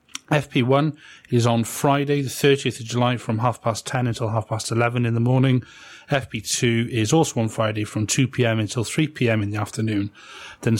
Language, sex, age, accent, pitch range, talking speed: English, male, 30-49, British, 115-145 Hz, 180 wpm